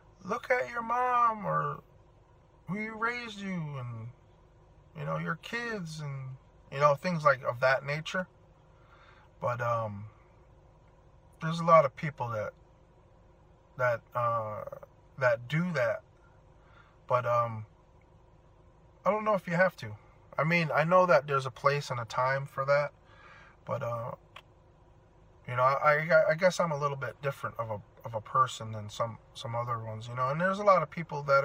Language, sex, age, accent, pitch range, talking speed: English, male, 20-39, American, 115-160 Hz, 170 wpm